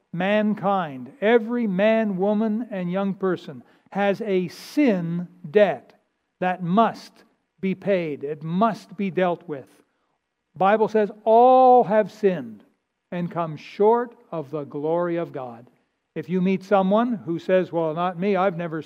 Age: 60-79